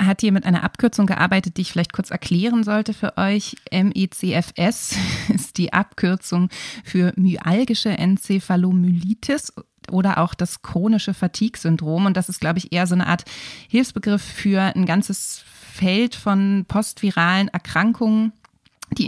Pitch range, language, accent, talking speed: 175-200 Hz, German, German, 140 wpm